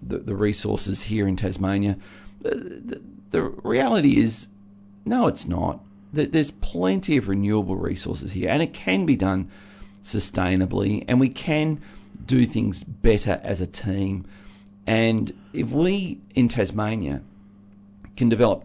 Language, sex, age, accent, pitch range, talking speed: English, male, 40-59, Australian, 100-115 Hz, 135 wpm